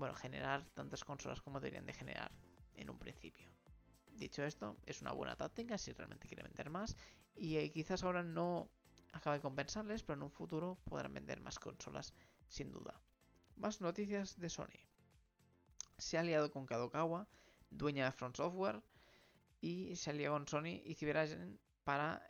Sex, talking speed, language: male, 165 wpm, Spanish